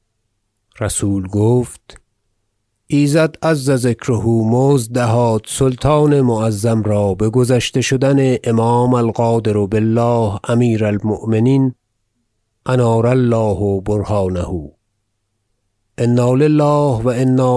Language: Persian